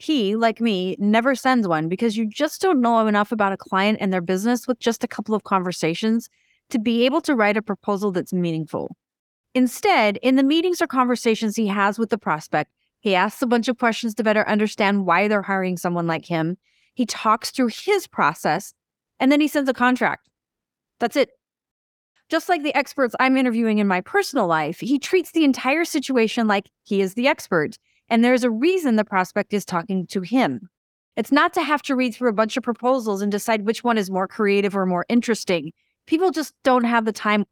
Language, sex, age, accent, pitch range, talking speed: English, female, 30-49, American, 200-260 Hz, 205 wpm